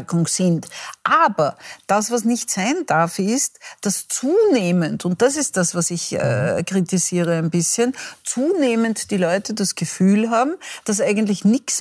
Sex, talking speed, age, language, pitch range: female, 145 wpm, 50-69, German, 175-220 Hz